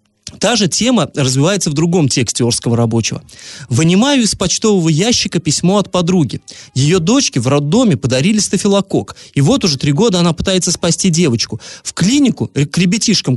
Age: 20-39